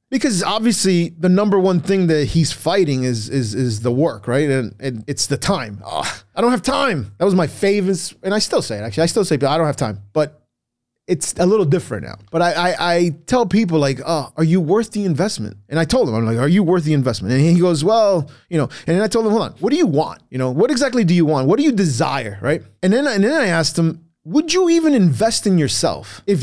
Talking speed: 260 wpm